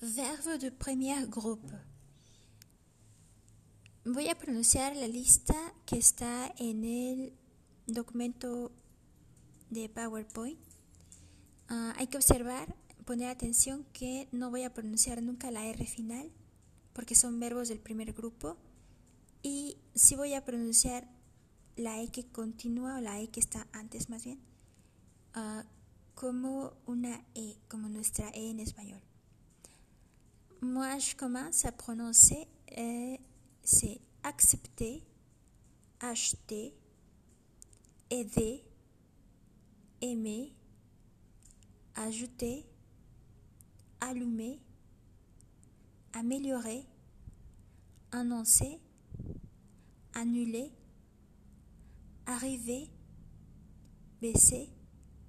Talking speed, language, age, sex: 85 wpm, French, 20-39, female